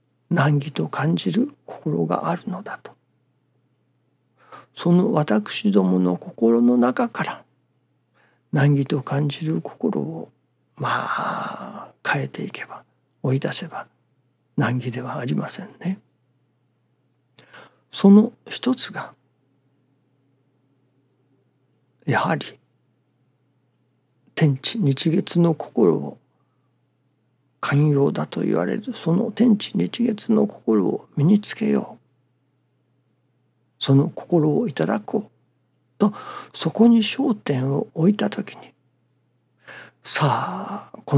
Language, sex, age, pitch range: Japanese, male, 60-79, 130-200 Hz